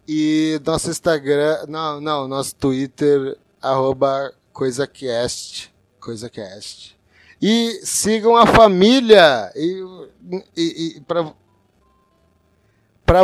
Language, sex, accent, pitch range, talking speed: Portuguese, male, Brazilian, 120-160 Hz, 80 wpm